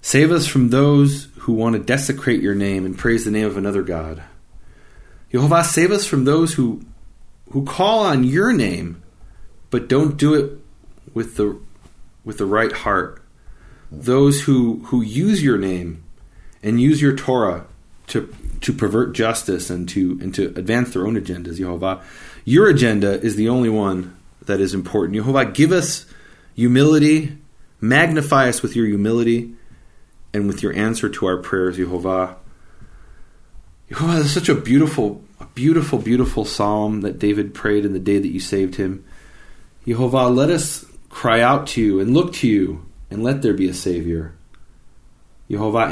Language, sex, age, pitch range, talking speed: English, male, 30-49, 95-130 Hz, 160 wpm